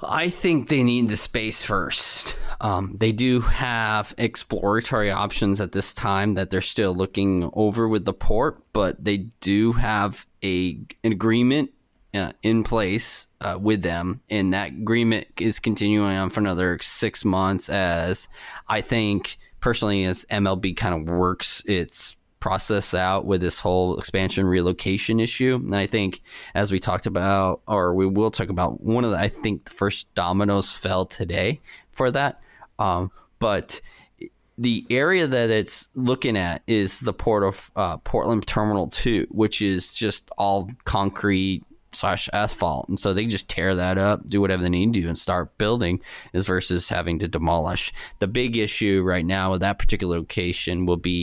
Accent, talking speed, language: American, 165 wpm, English